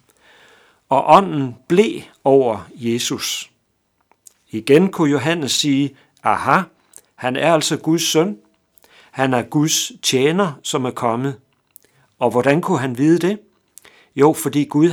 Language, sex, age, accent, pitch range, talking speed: Danish, male, 60-79, native, 130-165 Hz, 125 wpm